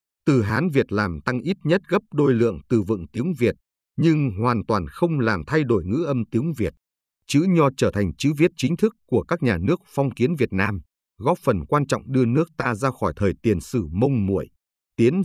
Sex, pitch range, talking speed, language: male, 100-140 Hz, 220 wpm, Vietnamese